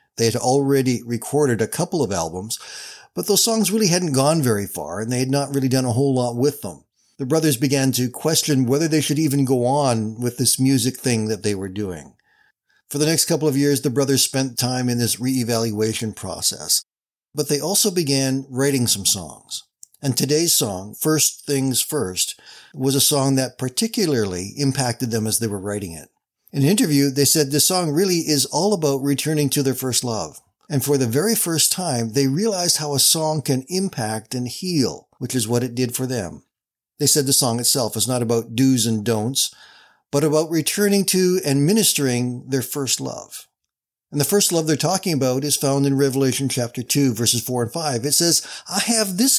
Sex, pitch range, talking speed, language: male, 120-155 Hz, 200 wpm, English